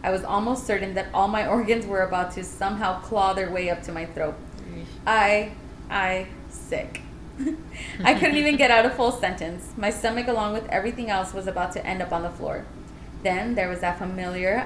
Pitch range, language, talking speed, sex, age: 180-215 Hz, English, 200 wpm, female, 20-39